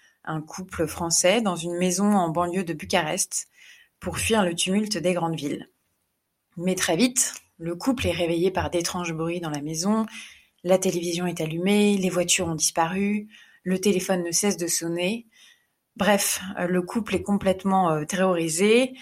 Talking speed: 160 wpm